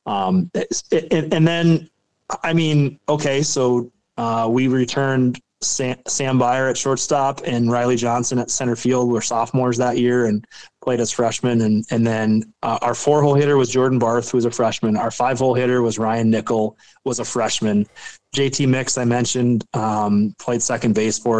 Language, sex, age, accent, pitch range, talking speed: English, male, 20-39, American, 105-125 Hz, 180 wpm